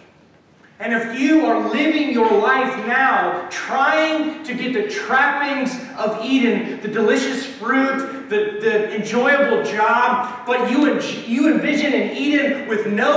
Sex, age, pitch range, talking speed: male, 30-49, 215-265 Hz, 135 wpm